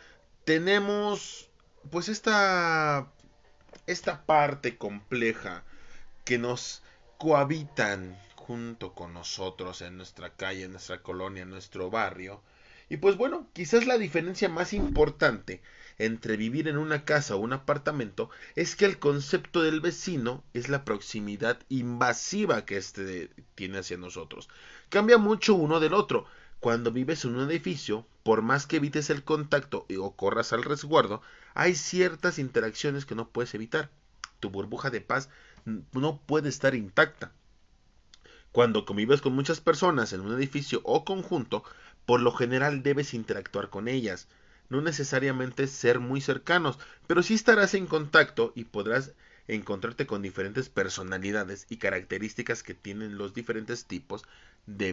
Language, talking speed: Spanish, 140 wpm